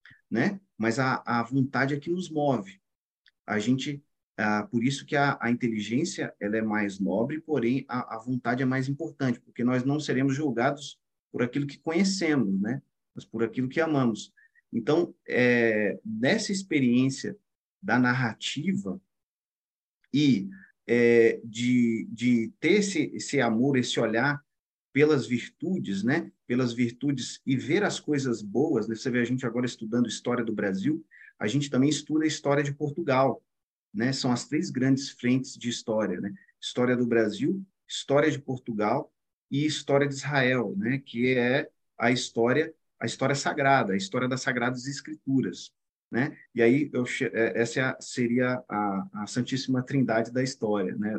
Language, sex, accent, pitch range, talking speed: Portuguese, male, Brazilian, 115-140 Hz, 155 wpm